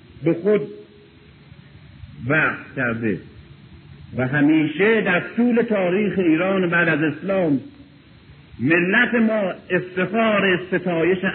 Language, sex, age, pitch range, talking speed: Persian, male, 50-69, 145-205 Hz, 90 wpm